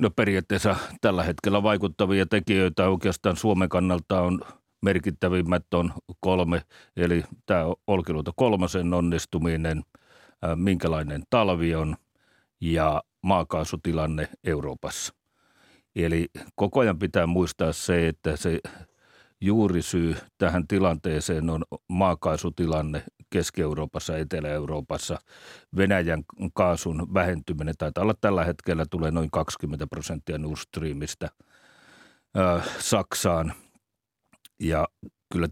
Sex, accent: male, native